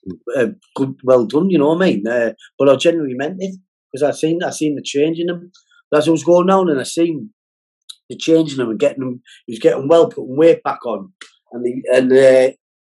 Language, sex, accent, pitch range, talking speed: English, male, British, 115-160 Hz, 240 wpm